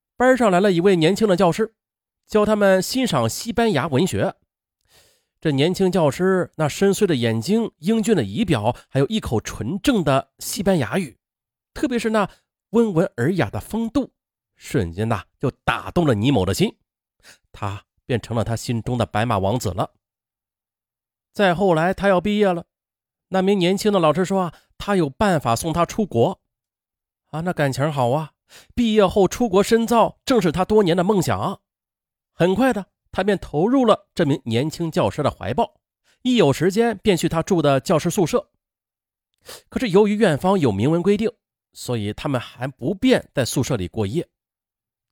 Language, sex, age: Chinese, male, 30-49